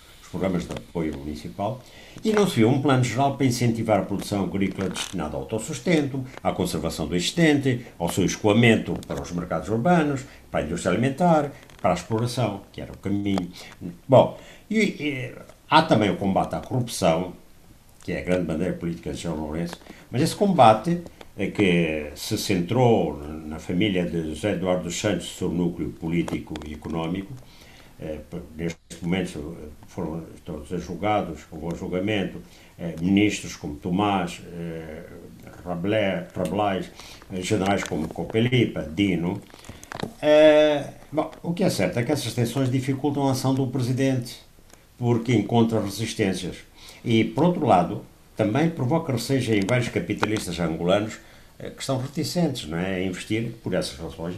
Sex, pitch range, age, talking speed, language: male, 85-125 Hz, 60-79, 155 wpm, Portuguese